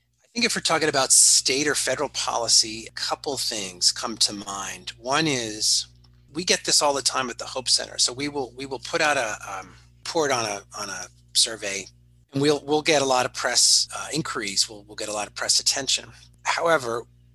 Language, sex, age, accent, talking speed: English, male, 30-49, American, 220 wpm